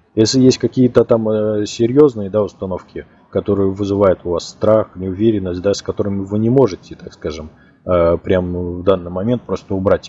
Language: Russian